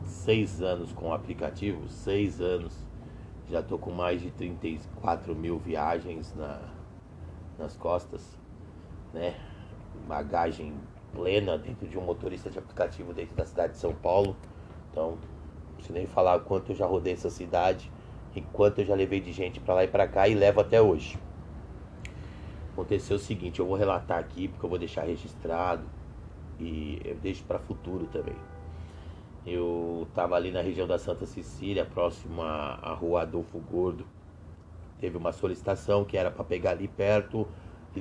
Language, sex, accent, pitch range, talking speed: Portuguese, male, Brazilian, 80-100 Hz, 160 wpm